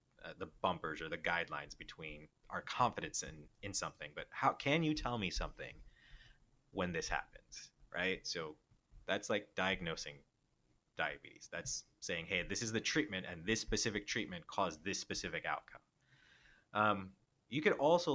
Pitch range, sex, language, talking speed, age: 85-115 Hz, male, English, 150 wpm, 20-39